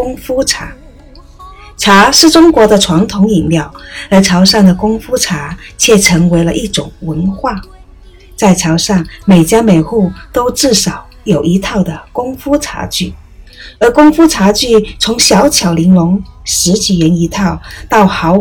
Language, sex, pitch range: Chinese, female, 170-225 Hz